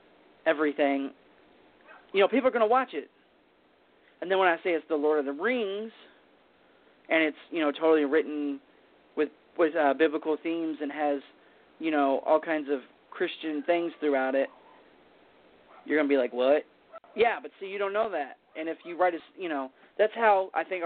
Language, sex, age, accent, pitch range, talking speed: English, male, 30-49, American, 145-190 Hz, 190 wpm